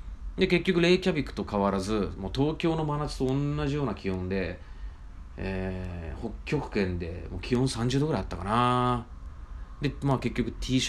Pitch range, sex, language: 85-130 Hz, male, Japanese